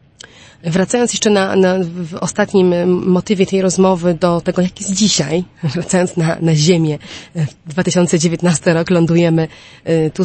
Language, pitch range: Polish, 165-185 Hz